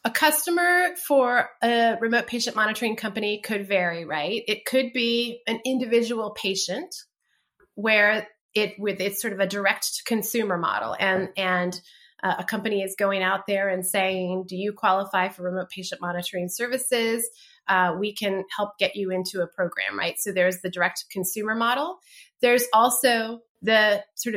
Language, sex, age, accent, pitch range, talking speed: English, female, 30-49, American, 190-230 Hz, 155 wpm